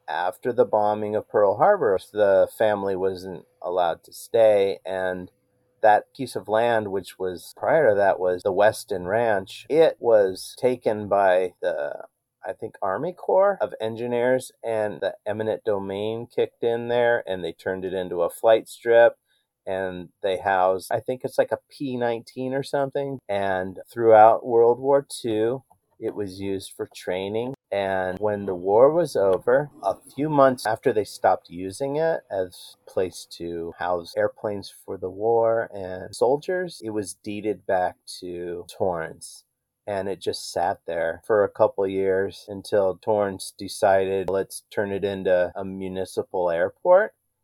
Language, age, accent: English, 40-59, American